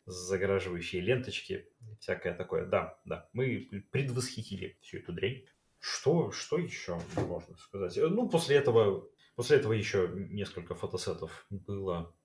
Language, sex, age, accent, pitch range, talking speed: Russian, male, 30-49, native, 90-115 Hz, 125 wpm